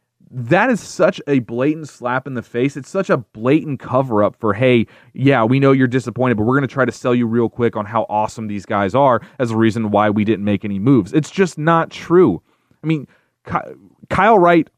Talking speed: 225 wpm